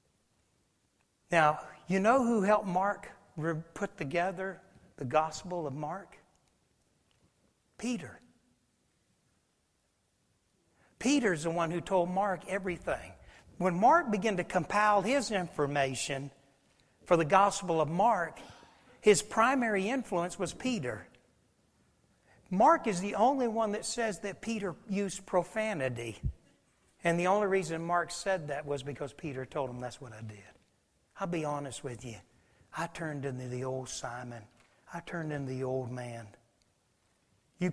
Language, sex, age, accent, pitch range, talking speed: English, male, 60-79, American, 135-195 Hz, 130 wpm